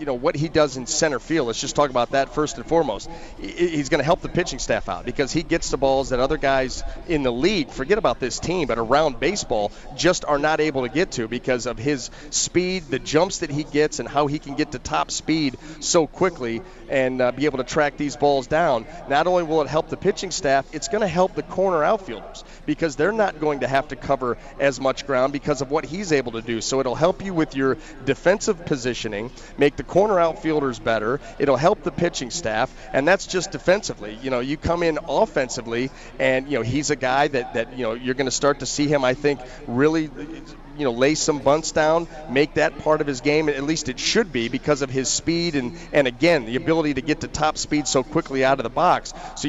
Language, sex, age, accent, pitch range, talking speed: English, male, 30-49, American, 135-160 Hz, 235 wpm